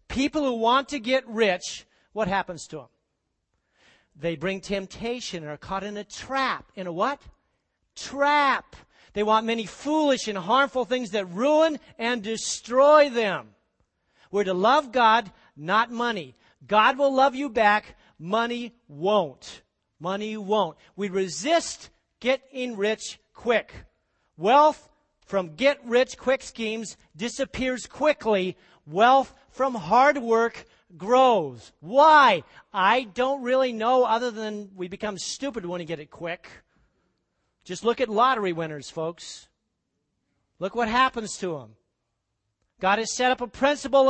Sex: male